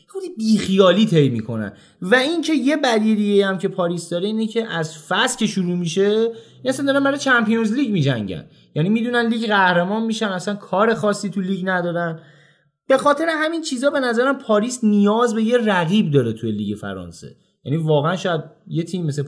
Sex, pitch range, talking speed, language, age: male, 135-195 Hz, 175 wpm, Persian, 20-39